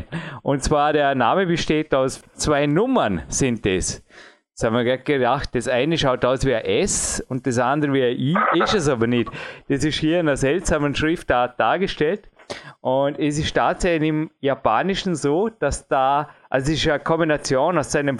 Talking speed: 185 wpm